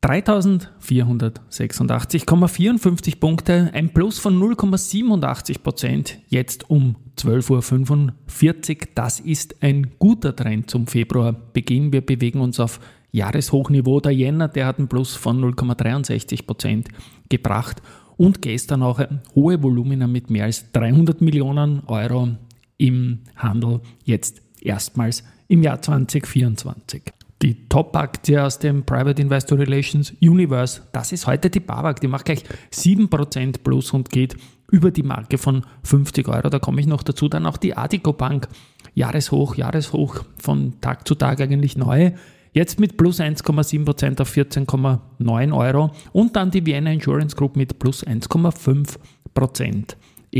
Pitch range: 120-150 Hz